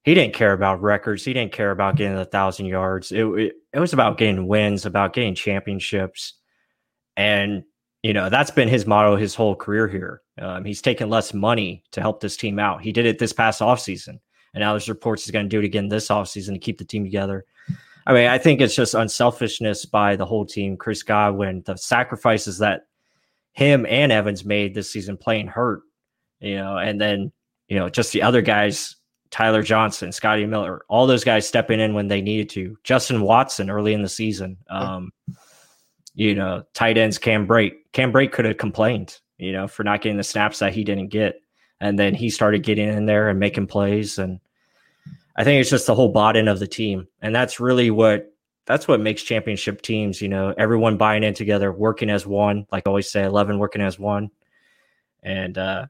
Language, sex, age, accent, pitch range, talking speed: English, male, 20-39, American, 100-110 Hz, 205 wpm